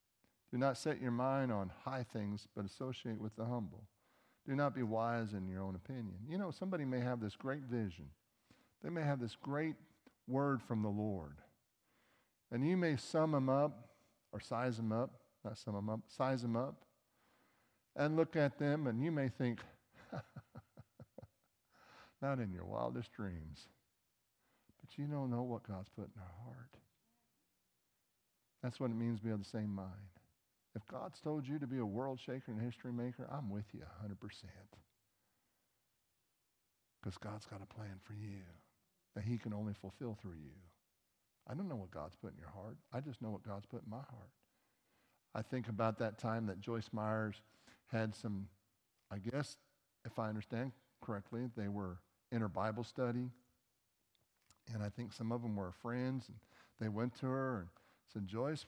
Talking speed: 180 wpm